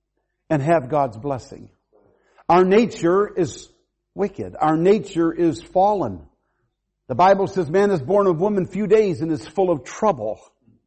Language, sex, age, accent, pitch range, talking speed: English, male, 60-79, American, 170-230 Hz, 150 wpm